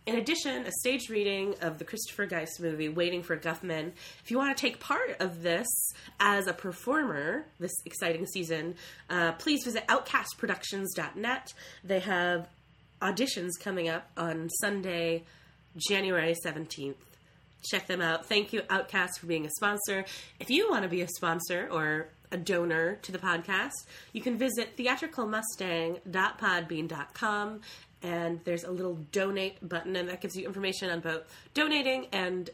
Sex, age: female, 20-39